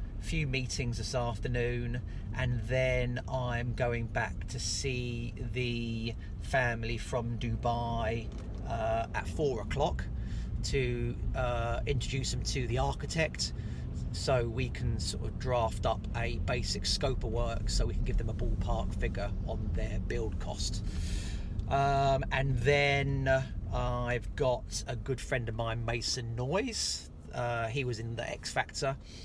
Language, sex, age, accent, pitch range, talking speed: English, male, 40-59, British, 110-125 Hz, 140 wpm